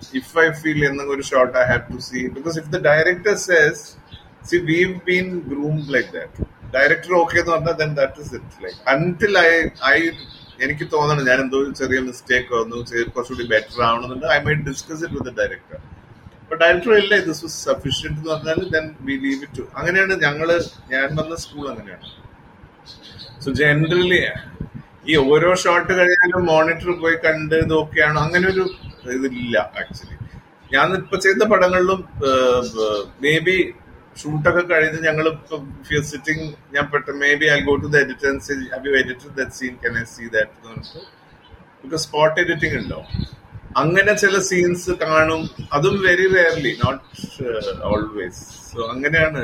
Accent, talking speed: native, 125 wpm